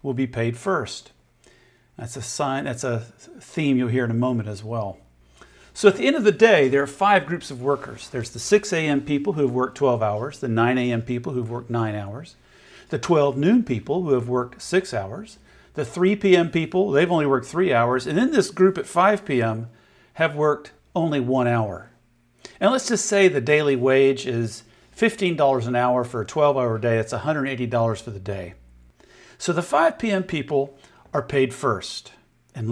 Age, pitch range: 50-69, 120-185 Hz